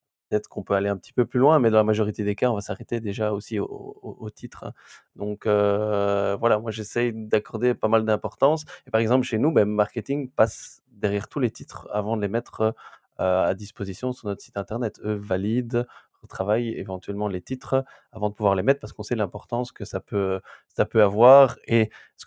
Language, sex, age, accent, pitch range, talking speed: French, male, 20-39, French, 105-120 Hz, 205 wpm